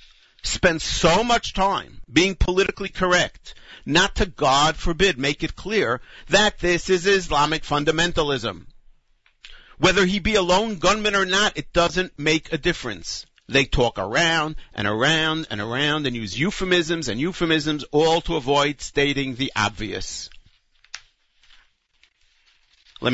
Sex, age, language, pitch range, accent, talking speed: male, 50-69, English, 130-180 Hz, American, 130 wpm